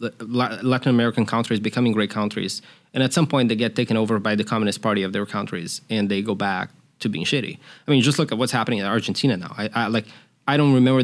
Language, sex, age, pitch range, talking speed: English, male, 20-39, 120-150 Hz, 240 wpm